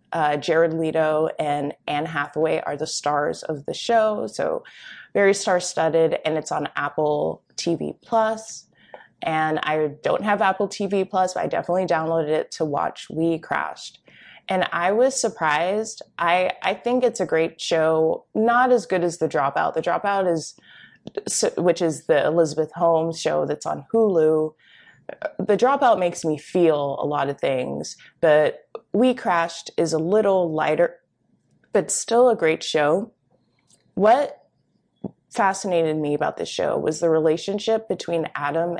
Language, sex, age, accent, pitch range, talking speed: English, female, 20-39, American, 155-200 Hz, 150 wpm